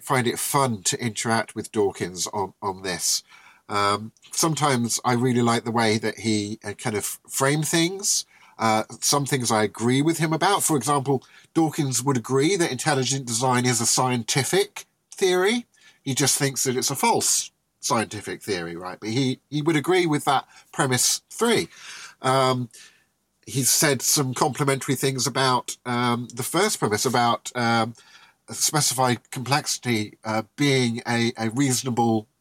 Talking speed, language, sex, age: 150 wpm, English, male, 50-69